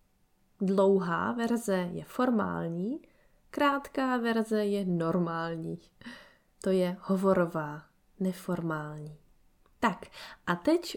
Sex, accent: female, native